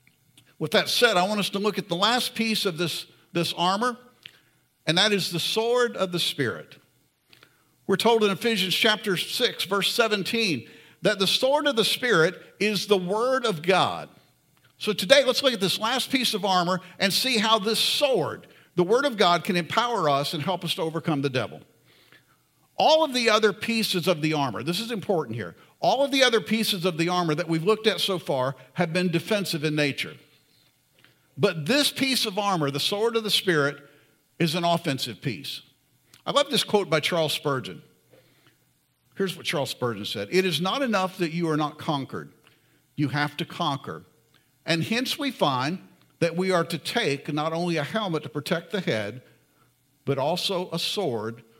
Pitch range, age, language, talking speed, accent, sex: 145-210 Hz, 50-69, English, 190 wpm, American, male